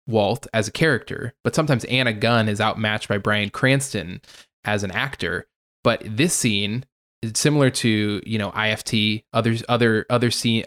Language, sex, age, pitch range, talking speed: English, male, 20-39, 110-130 Hz, 165 wpm